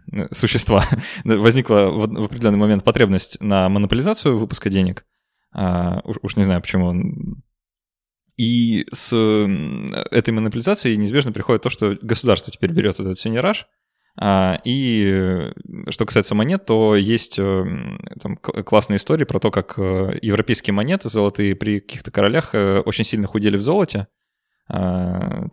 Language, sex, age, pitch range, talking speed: Russian, male, 20-39, 95-110 Hz, 120 wpm